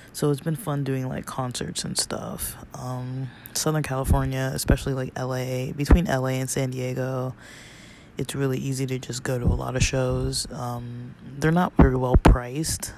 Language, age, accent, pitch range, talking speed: English, 20-39, American, 125-140 Hz, 165 wpm